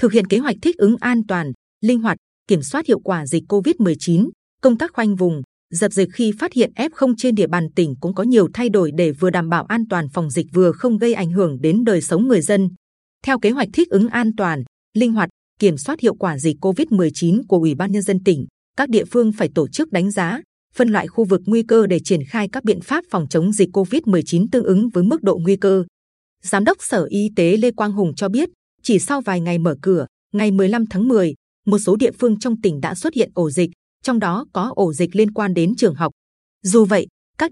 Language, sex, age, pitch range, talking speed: Vietnamese, female, 20-39, 175-230 Hz, 240 wpm